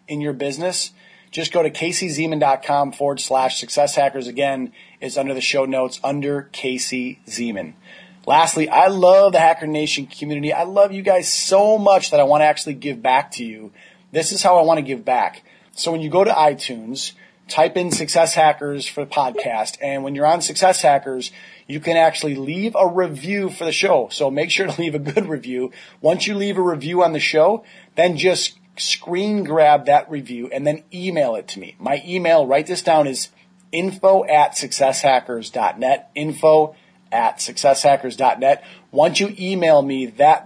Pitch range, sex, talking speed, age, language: 140-180 Hz, male, 180 wpm, 30-49, English